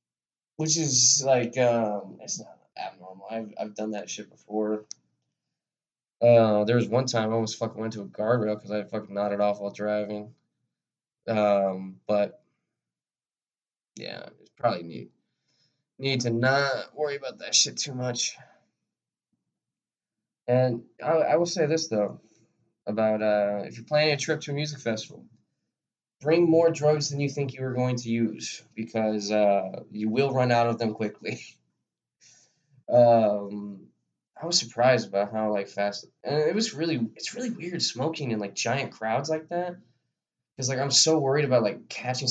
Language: English